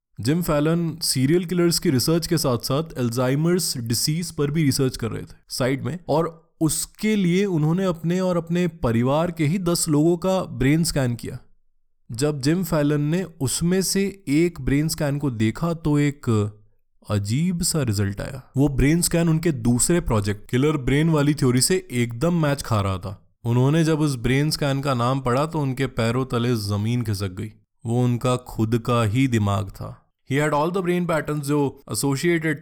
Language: Hindi